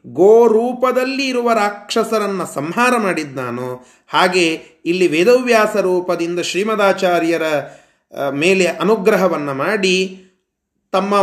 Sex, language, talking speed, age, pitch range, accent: male, Kannada, 85 wpm, 30-49, 160-225 Hz, native